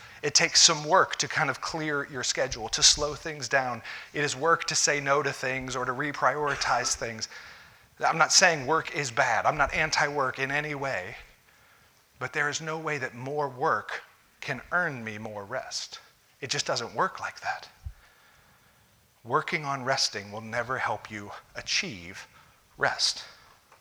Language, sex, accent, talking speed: English, male, American, 165 wpm